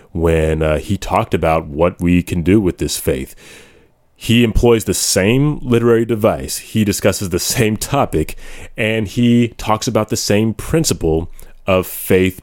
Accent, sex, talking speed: American, male, 155 wpm